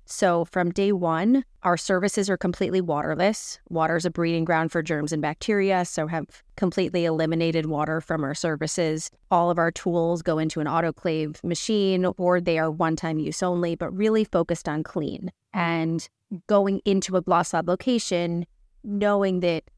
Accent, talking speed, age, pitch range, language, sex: American, 165 wpm, 30-49, 165-190 Hz, English, female